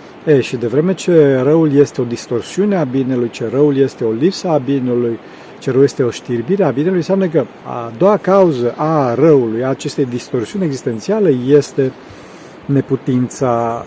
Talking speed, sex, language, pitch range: 165 wpm, male, Romanian, 125-155 Hz